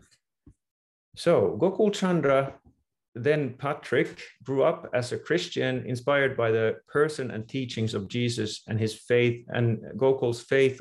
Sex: male